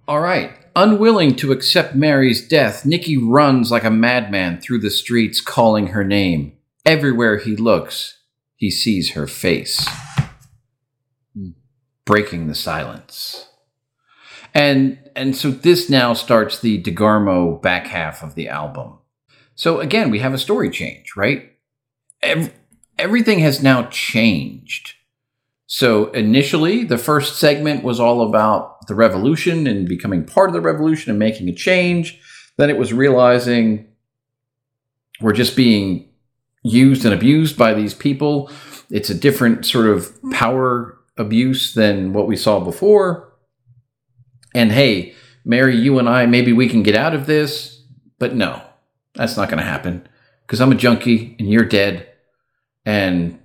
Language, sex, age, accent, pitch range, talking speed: English, male, 50-69, American, 110-140 Hz, 145 wpm